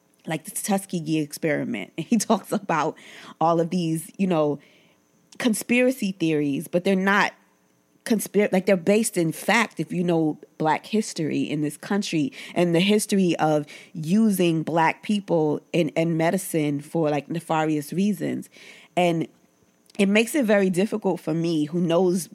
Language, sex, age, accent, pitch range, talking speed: English, female, 20-39, American, 155-200 Hz, 155 wpm